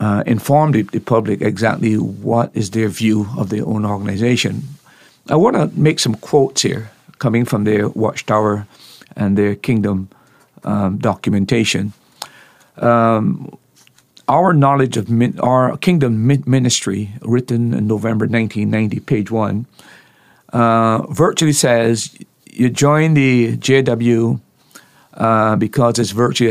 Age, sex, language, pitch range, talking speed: 50-69, male, English, 110-130 Hz, 120 wpm